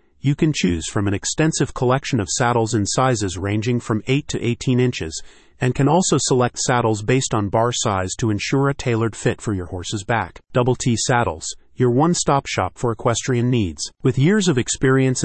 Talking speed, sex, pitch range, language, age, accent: 190 wpm, male, 105-135 Hz, English, 30-49, American